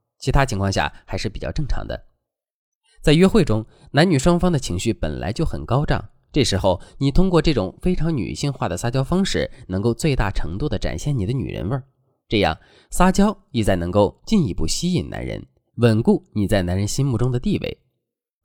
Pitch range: 95-145 Hz